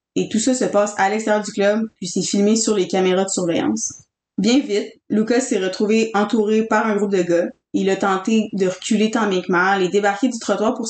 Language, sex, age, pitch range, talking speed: French, female, 20-39, 195-230 Hz, 225 wpm